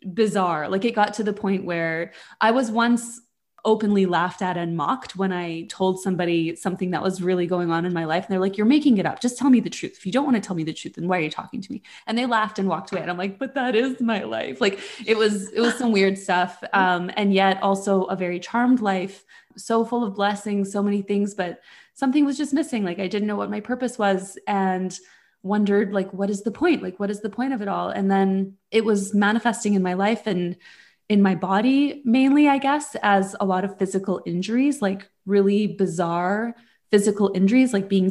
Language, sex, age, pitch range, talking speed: English, female, 20-39, 190-225 Hz, 235 wpm